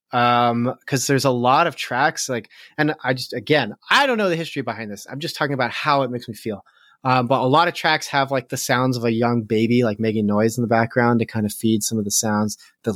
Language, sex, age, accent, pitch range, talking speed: English, male, 30-49, American, 115-145 Hz, 265 wpm